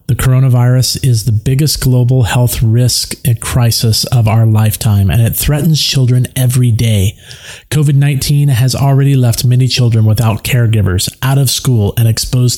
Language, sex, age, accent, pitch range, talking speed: English, male, 40-59, American, 110-130 Hz, 155 wpm